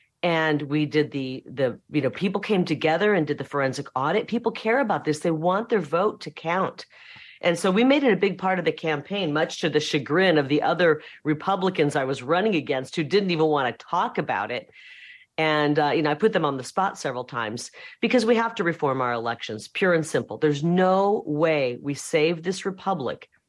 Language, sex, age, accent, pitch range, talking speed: English, female, 40-59, American, 150-195 Hz, 215 wpm